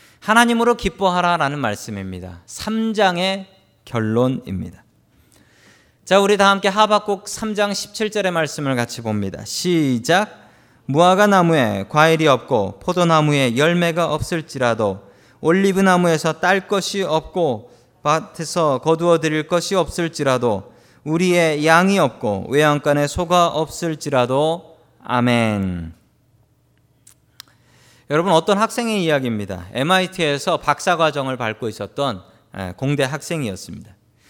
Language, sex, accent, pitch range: Korean, male, native, 125-185 Hz